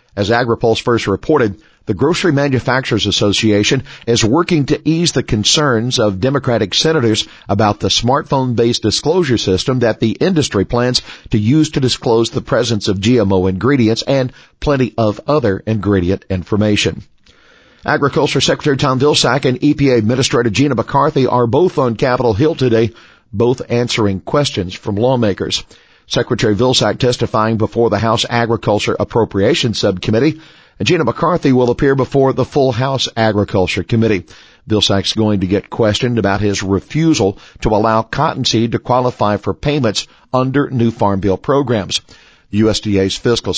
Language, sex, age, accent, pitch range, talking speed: English, male, 50-69, American, 105-135 Hz, 145 wpm